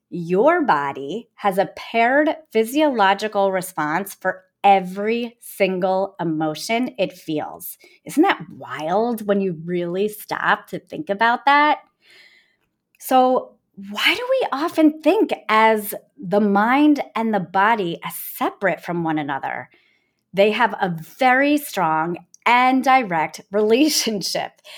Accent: American